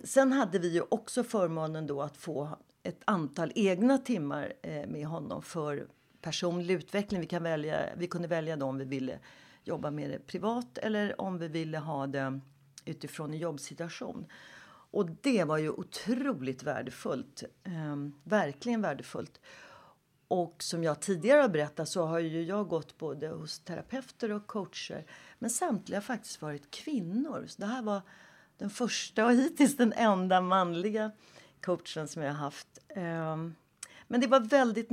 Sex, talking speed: female, 155 wpm